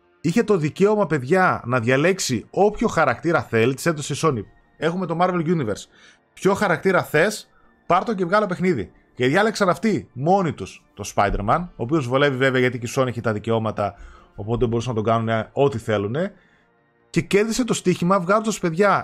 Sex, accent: male, native